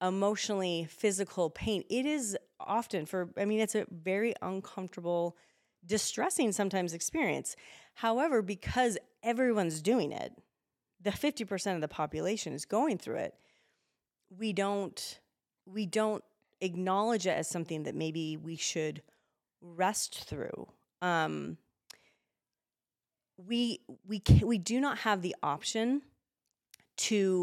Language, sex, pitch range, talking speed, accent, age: English, female, 170-215 Hz, 120 wpm, American, 30-49